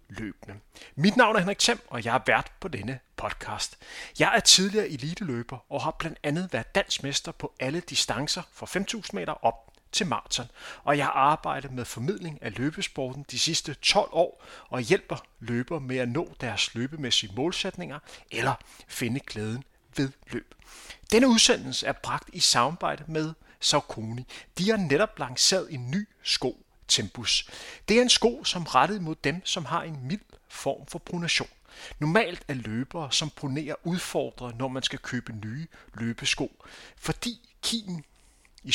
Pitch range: 130-185 Hz